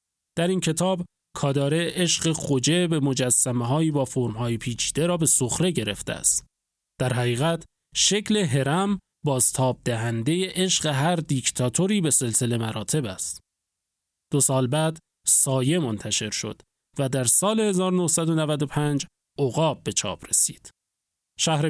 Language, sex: Persian, male